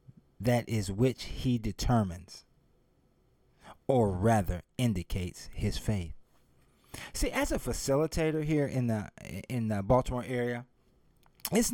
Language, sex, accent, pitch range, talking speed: English, male, American, 110-160 Hz, 110 wpm